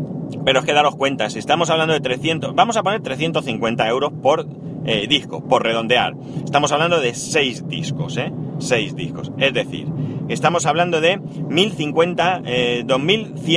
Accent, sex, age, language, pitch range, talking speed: Spanish, male, 30-49, Spanish, 125-160 Hz, 150 wpm